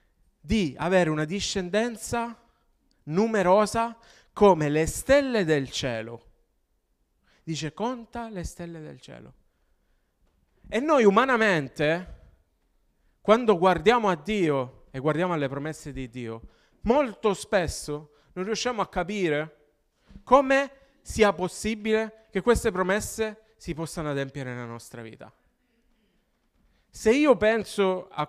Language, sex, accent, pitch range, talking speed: Italian, male, native, 150-240 Hz, 110 wpm